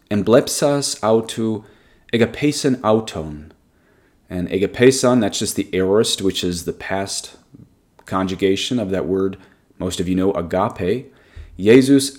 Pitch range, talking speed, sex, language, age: 95-120 Hz, 125 wpm, male, English, 30-49